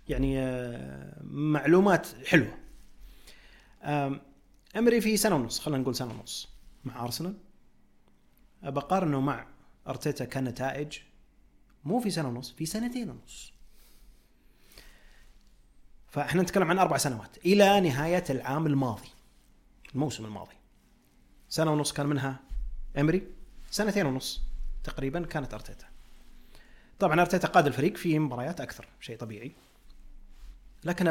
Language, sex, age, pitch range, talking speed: Arabic, male, 30-49, 130-180 Hz, 110 wpm